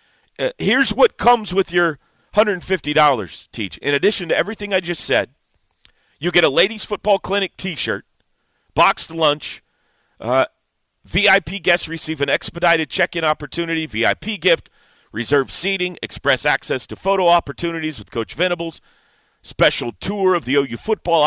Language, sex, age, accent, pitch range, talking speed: English, male, 40-59, American, 140-180 Hz, 140 wpm